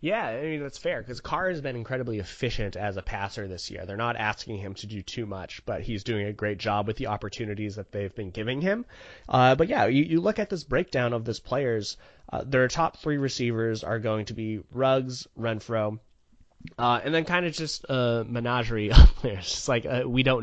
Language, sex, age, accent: English, male, 20-39, American